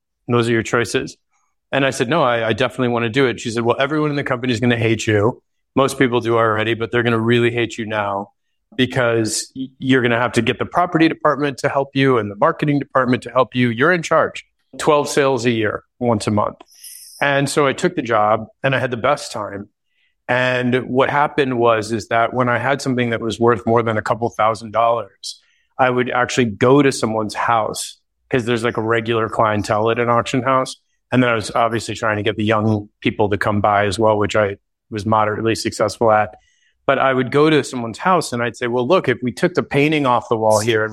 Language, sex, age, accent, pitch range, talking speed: English, male, 30-49, American, 115-130 Hz, 235 wpm